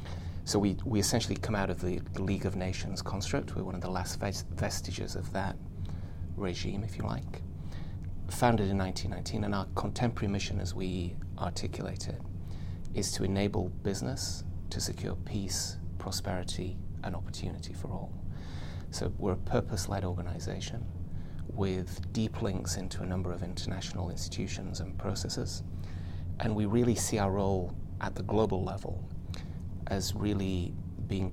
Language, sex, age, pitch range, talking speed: Danish, male, 30-49, 85-95 Hz, 150 wpm